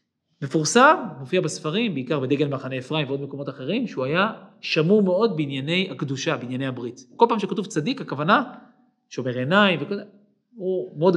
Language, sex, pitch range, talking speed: Hebrew, male, 155-235 Hz, 150 wpm